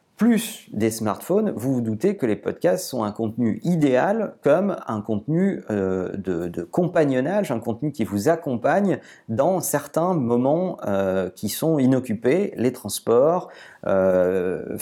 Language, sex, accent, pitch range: French, male, French, 115-185 Hz